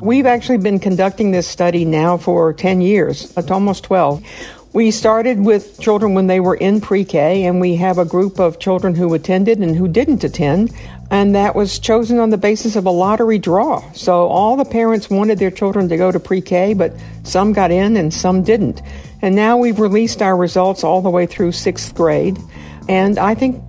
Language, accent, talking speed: English, American, 200 wpm